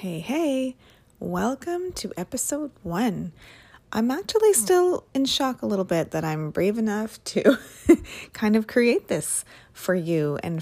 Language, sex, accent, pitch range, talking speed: English, female, American, 165-220 Hz, 145 wpm